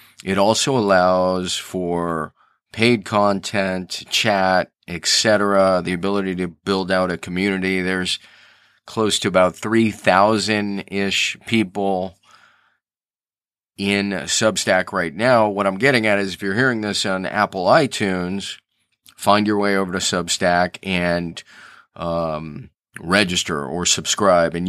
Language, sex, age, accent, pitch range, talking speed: English, male, 30-49, American, 90-110 Hz, 120 wpm